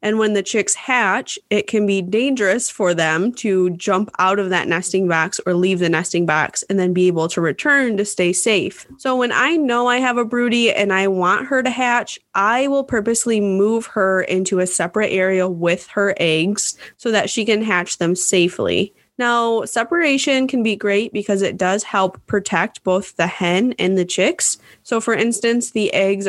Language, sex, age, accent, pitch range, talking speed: English, female, 20-39, American, 185-230 Hz, 195 wpm